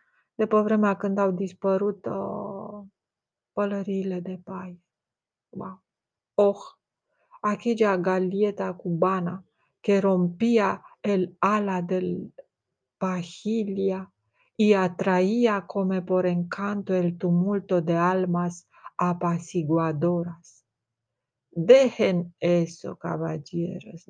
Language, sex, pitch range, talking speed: Romanian, female, 170-200 Hz, 80 wpm